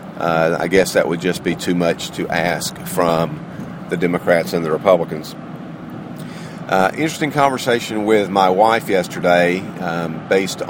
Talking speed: 145 wpm